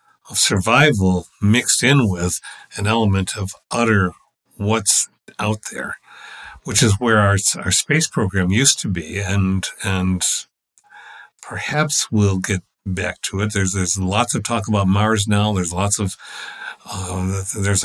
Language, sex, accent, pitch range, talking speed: English, male, American, 95-115 Hz, 145 wpm